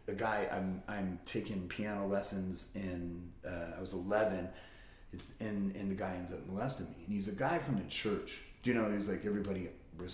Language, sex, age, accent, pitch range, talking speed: English, male, 30-49, American, 85-110 Hz, 215 wpm